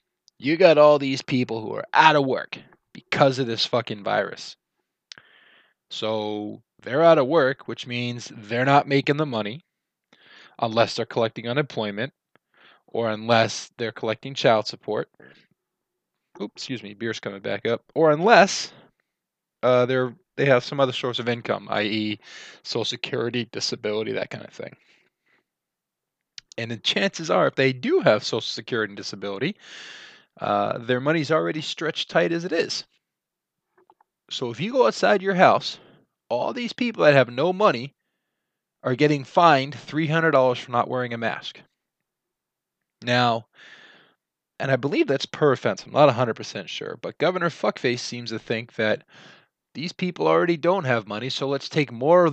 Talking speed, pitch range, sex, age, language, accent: 155 wpm, 115-155 Hz, male, 20-39, English, American